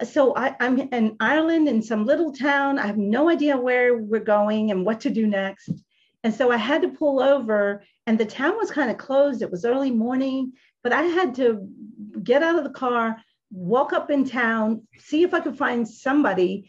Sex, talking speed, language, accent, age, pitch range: female, 210 wpm, English, American, 40-59, 195-270 Hz